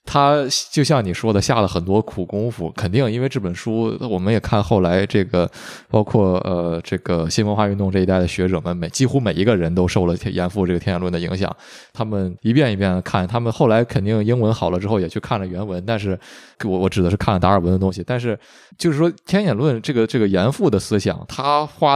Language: Chinese